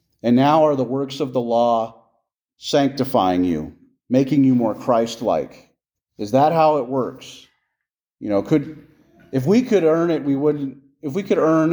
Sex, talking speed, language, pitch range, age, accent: male, 175 wpm, English, 125-160 Hz, 40-59, American